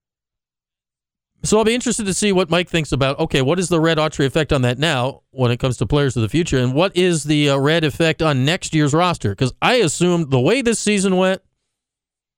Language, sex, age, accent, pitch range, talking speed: English, male, 40-59, American, 125-175 Hz, 230 wpm